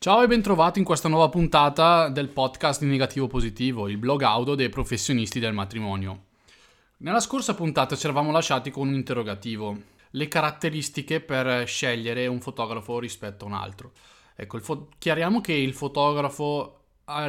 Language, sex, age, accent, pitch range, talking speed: Italian, male, 20-39, native, 110-140 Hz, 155 wpm